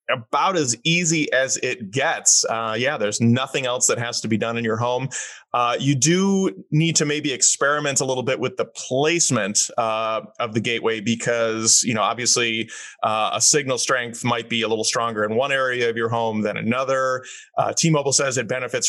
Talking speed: 195 wpm